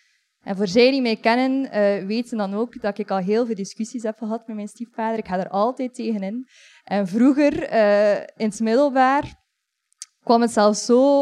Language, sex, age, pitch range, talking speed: Dutch, female, 20-39, 205-255 Hz, 185 wpm